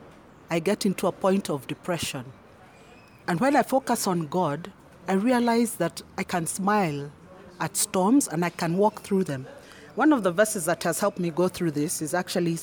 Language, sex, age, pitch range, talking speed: English, female, 40-59, 155-205 Hz, 190 wpm